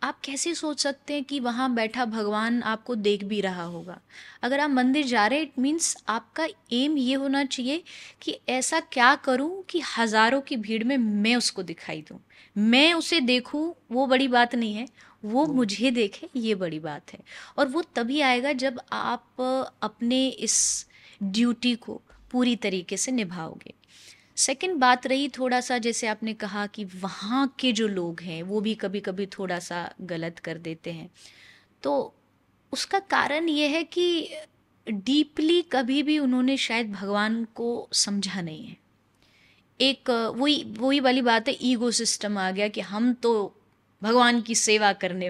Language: English